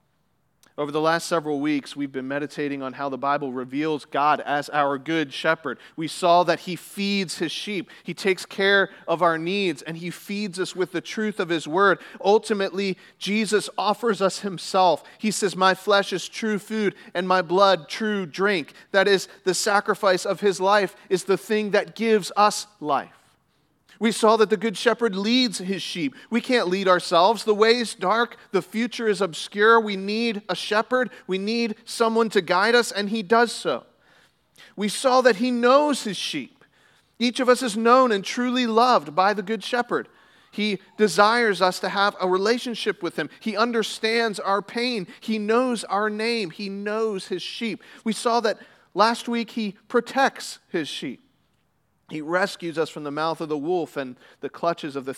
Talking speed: 185 wpm